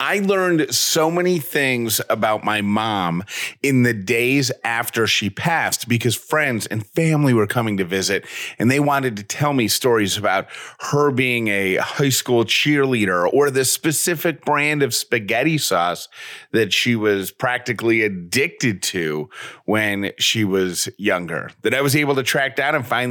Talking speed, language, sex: 160 wpm, English, male